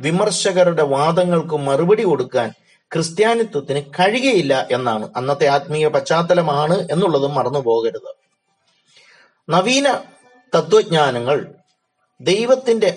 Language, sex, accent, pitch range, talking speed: Malayalam, male, native, 155-225 Hz, 70 wpm